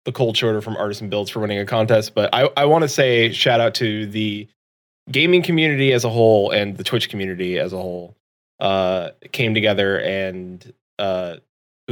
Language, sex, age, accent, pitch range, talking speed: English, male, 20-39, American, 95-115 Hz, 185 wpm